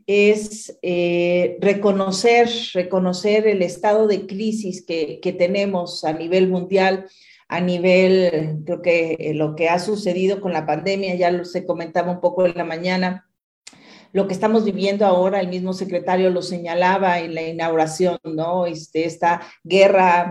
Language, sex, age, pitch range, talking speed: Spanish, female, 40-59, 175-205 Hz, 150 wpm